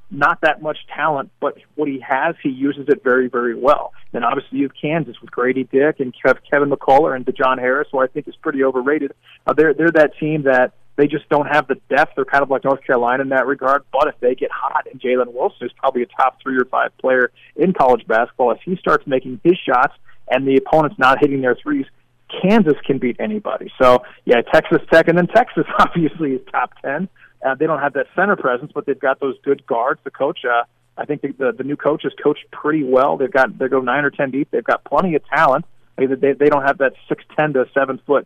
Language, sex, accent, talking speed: English, male, American, 240 wpm